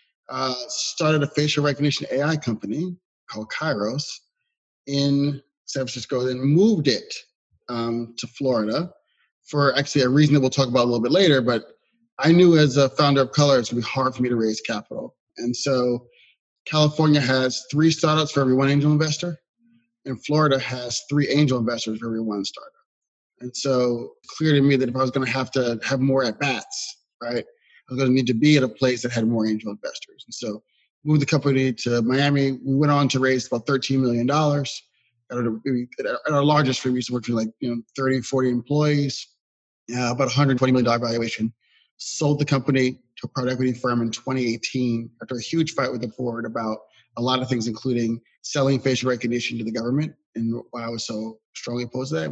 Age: 30-49